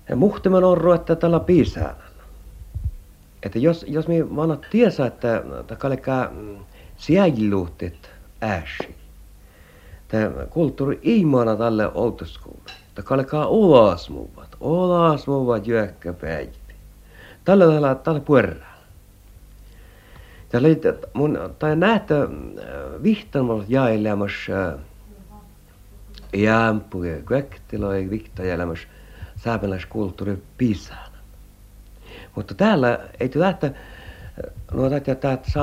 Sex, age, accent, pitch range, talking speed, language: male, 60-79, native, 95-145 Hz, 70 wpm, Finnish